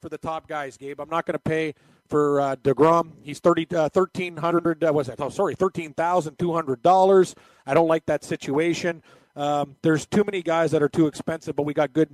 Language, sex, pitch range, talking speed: English, male, 150-170 Hz, 230 wpm